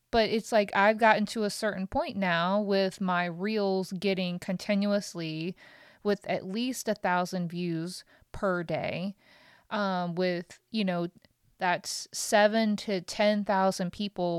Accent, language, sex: American, English, female